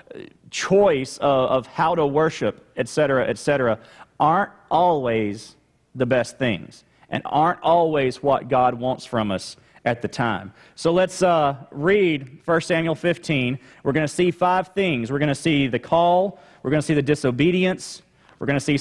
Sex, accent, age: male, American, 40-59